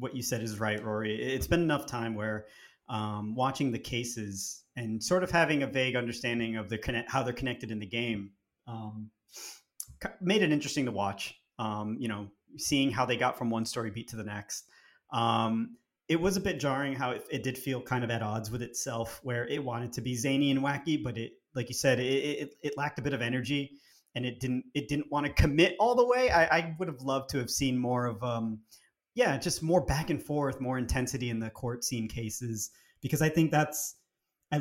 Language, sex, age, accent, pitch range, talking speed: English, male, 30-49, American, 115-140 Hz, 225 wpm